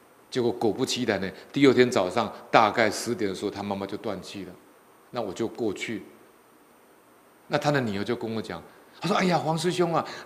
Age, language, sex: 50-69, Chinese, male